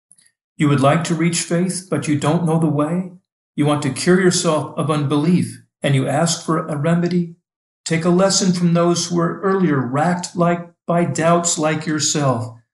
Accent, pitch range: American, 130-170 Hz